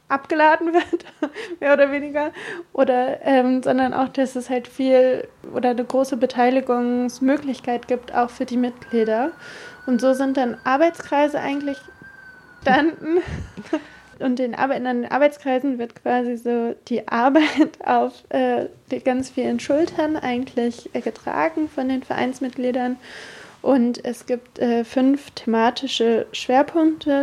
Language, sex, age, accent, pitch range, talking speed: German, female, 20-39, German, 235-275 Hz, 120 wpm